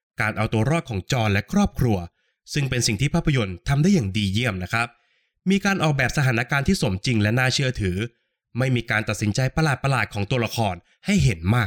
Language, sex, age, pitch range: Thai, male, 20-39, 110-150 Hz